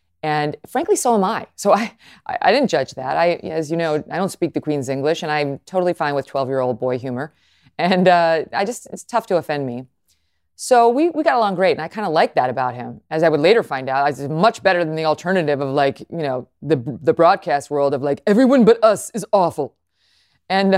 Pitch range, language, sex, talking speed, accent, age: 135-180 Hz, English, female, 235 wpm, American, 30-49